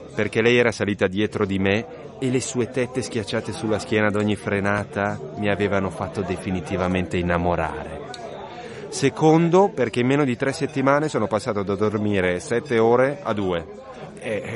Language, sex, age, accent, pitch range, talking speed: Italian, male, 30-49, native, 95-130 Hz, 155 wpm